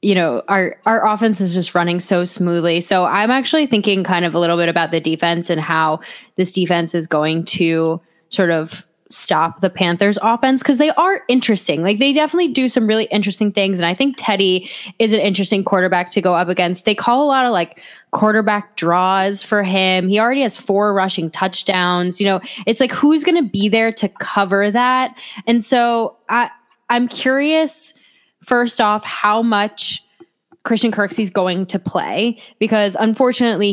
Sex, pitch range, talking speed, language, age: female, 180-220 Hz, 185 wpm, English, 10-29